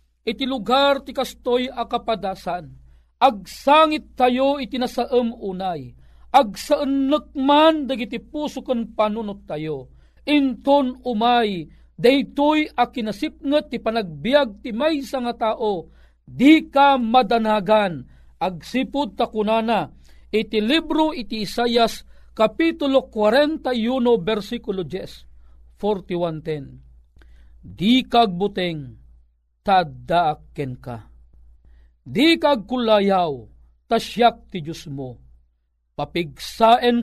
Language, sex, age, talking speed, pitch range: Filipino, male, 40-59, 85 wpm, 170-260 Hz